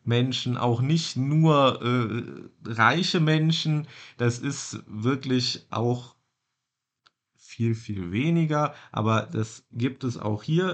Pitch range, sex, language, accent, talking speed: 115-130 Hz, male, German, German, 110 wpm